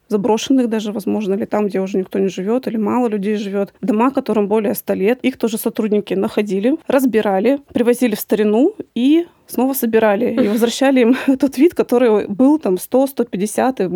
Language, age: Russian, 20-39